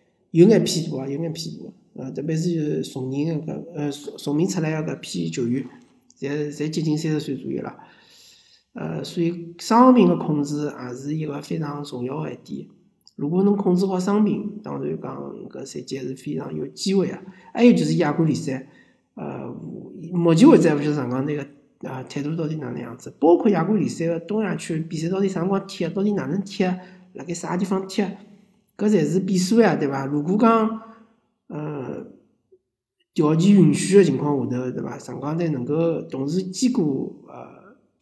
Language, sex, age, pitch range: Chinese, male, 50-69, 145-195 Hz